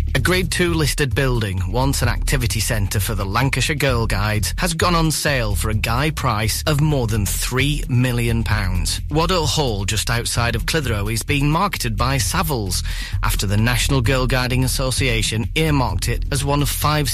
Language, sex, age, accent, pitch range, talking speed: English, male, 30-49, British, 105-135 Hz, 180 wpm